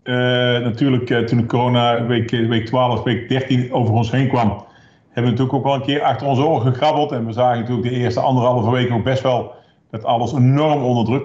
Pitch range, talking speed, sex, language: 115-135 Hz, 225 wpm, male, Dutch